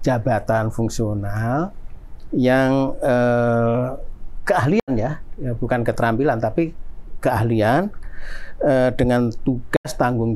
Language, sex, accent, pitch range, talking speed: Indonesian, male, native, 115-135 Hz, 85 wpm